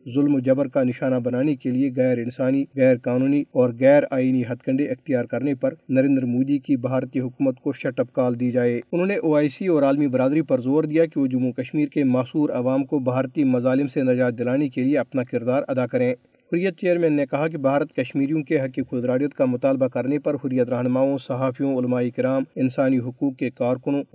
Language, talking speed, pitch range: Urdu, 205 wpm, 130-150 Hz